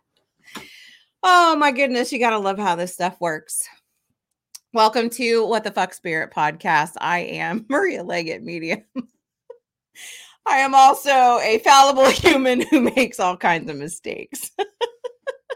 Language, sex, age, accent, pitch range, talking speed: English, female, 30-49, American, 170-240 Hz, 135 wpm